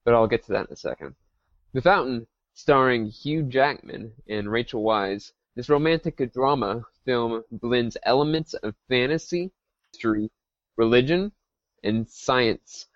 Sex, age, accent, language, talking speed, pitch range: male, 20-39, American, English, 130 wpm, 115-145 Hz